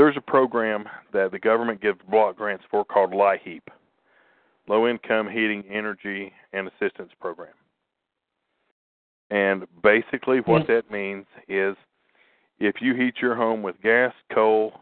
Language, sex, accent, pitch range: English, male, American, 100-115 Hz